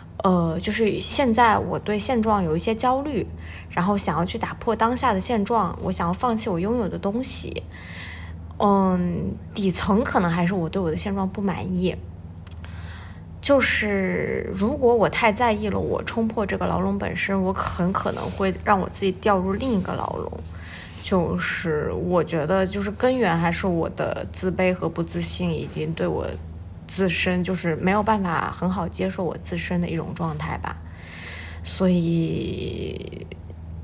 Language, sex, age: Chinese, female, 20-39